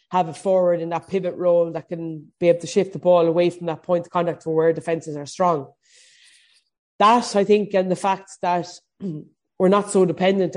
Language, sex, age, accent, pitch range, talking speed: English, female, 20-39, Irish, 165-190 Hz, 205 wpm